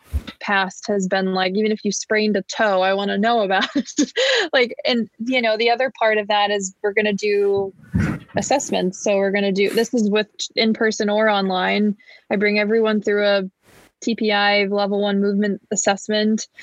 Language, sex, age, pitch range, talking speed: English, female, 20-39, 200-225 Hz, 190 wpm